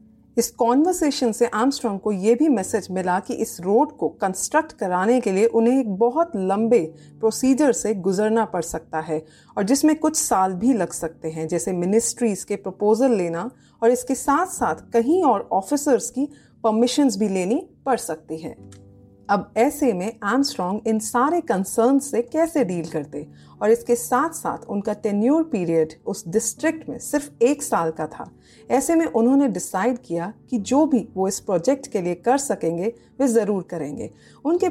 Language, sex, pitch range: Hindi, female, 185-260 Hz